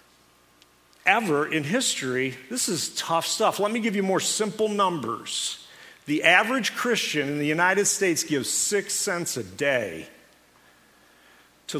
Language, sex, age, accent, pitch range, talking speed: English, male, 50-69, American, 125-190 Hz, 135 wpm